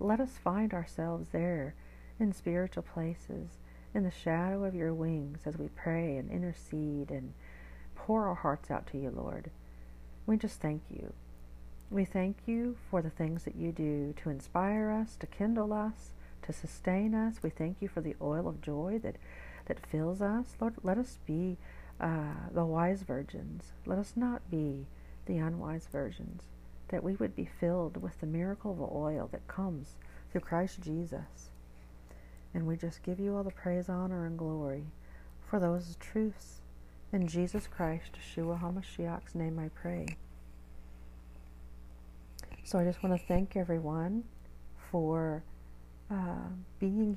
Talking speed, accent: 160 wpm, American